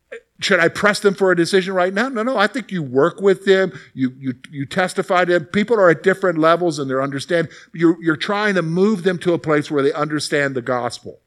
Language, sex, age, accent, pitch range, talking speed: English, male, 50-69, American, 155-215 Hz, 240 wpm